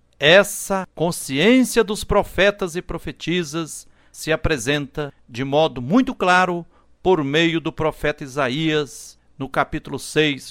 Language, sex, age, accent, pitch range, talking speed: Portuguese, male, 60-79, Brazilian, 135-180 Hz, 115 wpm